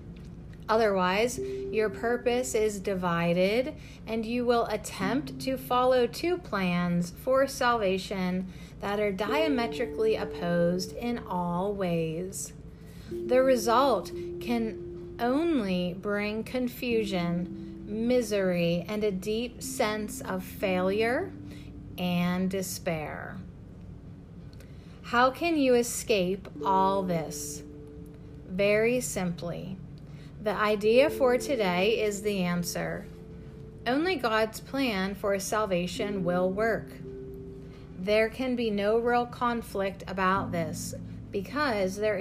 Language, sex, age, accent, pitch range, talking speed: English, female, 40-59, American, 175-225 Hz, 100 wpm